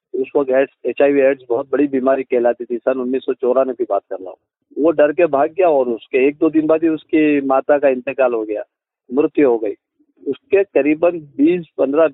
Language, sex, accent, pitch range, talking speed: Hindi, male, native, 135-175 Hz, 210 wpm